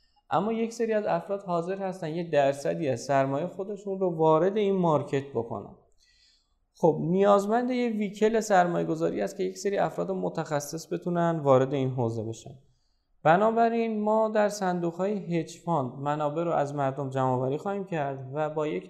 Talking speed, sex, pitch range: 160 wpm, male, 140-190 Hz